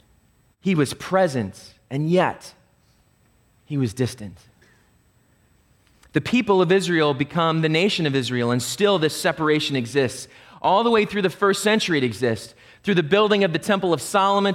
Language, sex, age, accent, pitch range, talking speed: English, male, 30-49, American, 150-240 Hz, 160 wpm